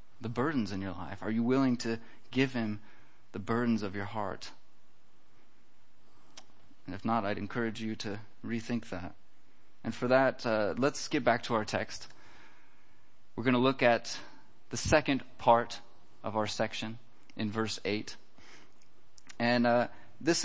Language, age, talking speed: German, 30-49, 155 wpm